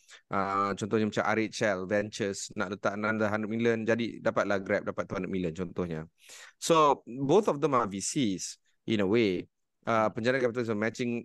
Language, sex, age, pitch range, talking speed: Malay, male, 30-49, 105-130 Hz, 165 wpm